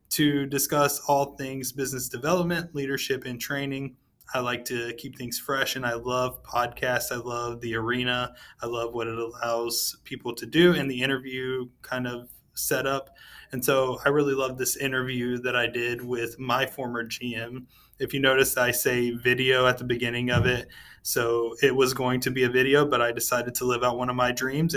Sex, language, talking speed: male, English, 195 wpm